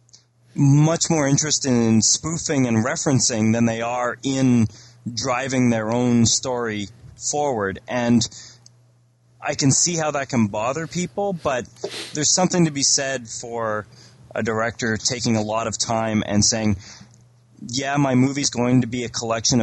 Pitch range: 110-125 Hz